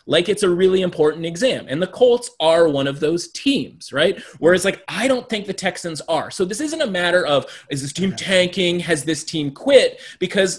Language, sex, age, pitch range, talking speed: English, male, 30-49, 150-200 Hz, 215 wpm